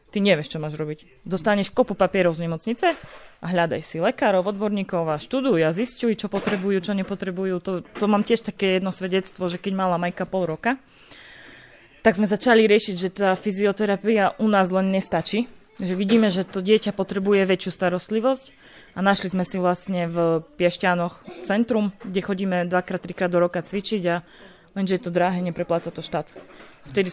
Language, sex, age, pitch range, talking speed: Slovak, female, 20-39, 180-205 Hz, 175 wpm